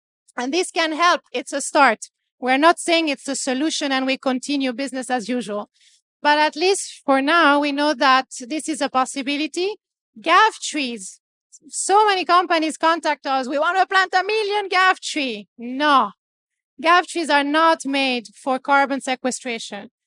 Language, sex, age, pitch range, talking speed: English, female, 30-49, 260-330 Hz, 165 wpm